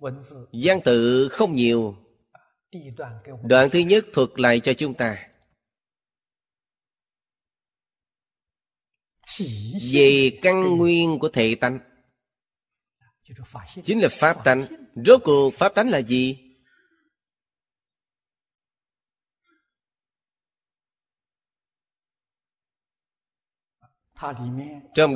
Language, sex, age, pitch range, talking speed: Vietnamese, male, 30-49, 115-150 Hz, 70 wpm